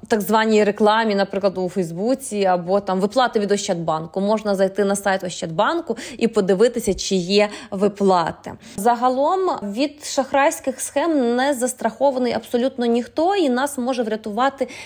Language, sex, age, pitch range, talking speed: Ukrainian, female, 20-39, 200-245 Hz, 135 wpm